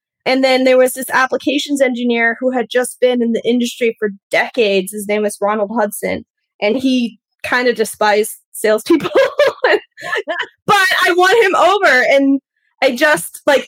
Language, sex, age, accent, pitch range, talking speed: English, female, 20-39, American, 220-290 Hz, 160 wpm